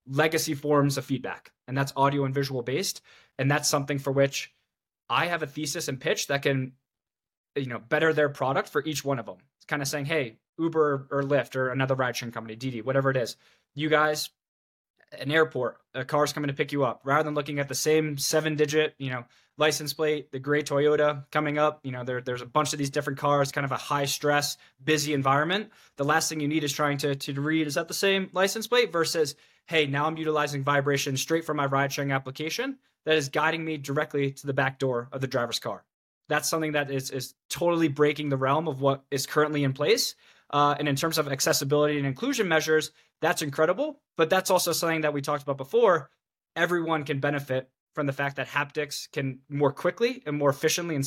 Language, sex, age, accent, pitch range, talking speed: English, male, 20-39, American, 140-155 Hz, 215 wpm